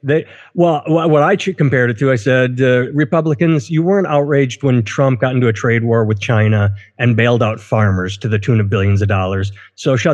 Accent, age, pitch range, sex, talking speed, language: American, 30-49, 110-145 Hz, male, 215 wpm, English